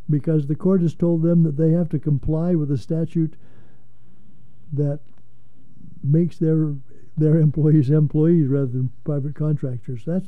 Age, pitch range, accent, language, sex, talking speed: 60-79, 145-200 Hz, American, English, male, 145 wpm